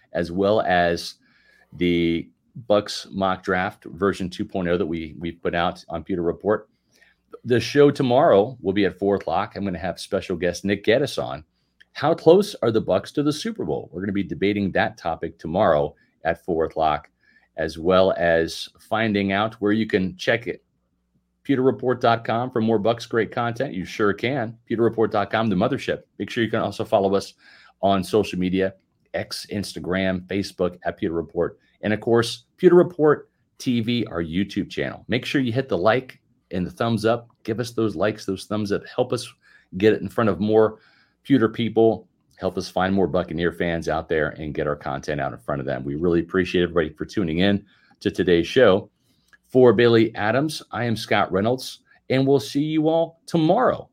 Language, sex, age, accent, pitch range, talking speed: English, male, 40-59, American, 90-120 Hz, 185 wpm